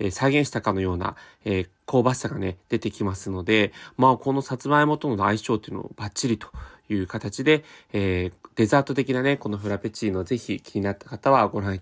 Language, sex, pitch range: Japanese, male, 105-150 Hz